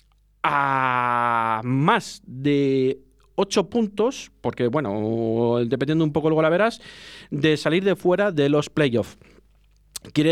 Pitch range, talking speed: 125-160 Hz, 120 wpm